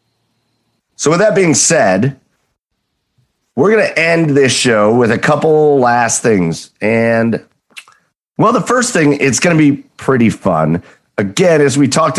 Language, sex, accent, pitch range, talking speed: English, male, American, 110-160 Hz, 155 wpm